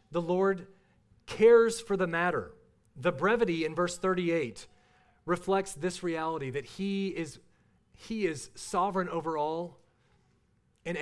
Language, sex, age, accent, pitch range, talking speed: English, male, 40-59, American, 135-180 Hz, 125 wpm